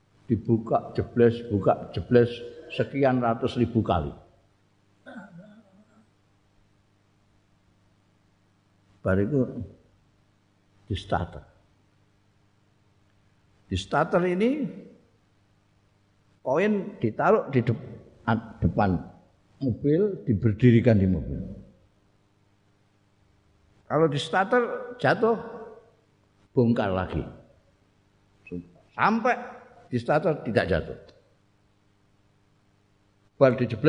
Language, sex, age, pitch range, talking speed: Indonesian, male, 60-79, 100-140 Hz, 60 wpm